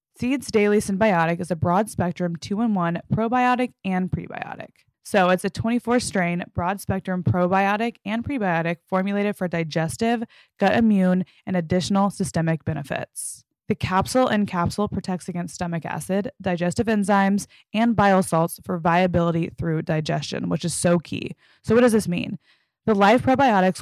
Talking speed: 140 wpm